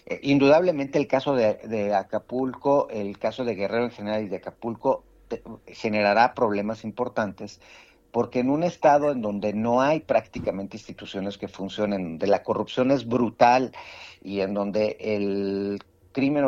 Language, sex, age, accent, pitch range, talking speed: Spanish, male, 50-69, Mexican, 100-125 Hz, 150 wpm